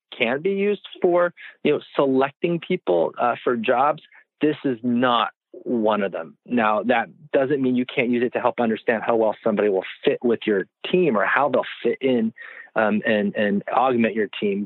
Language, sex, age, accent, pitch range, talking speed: English, male, 30-49, American, 115-160 Hz, 190 wpm